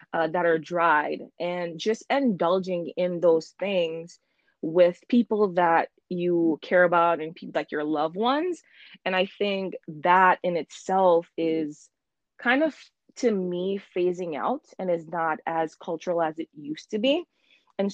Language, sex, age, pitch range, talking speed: English, female, 20-39, 165-195 Hz, 155 wpm